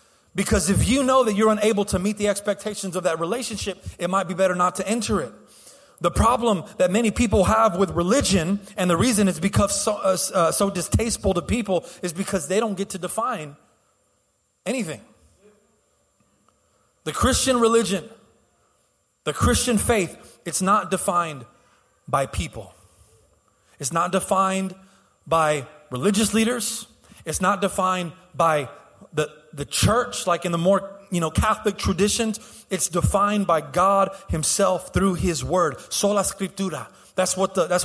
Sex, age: male, 30-49